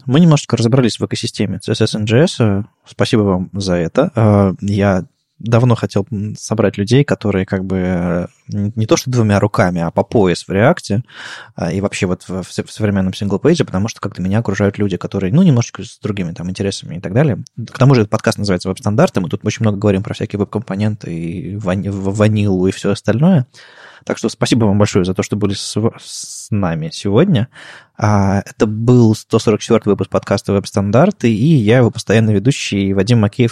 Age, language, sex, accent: 20-39, Russian, male, native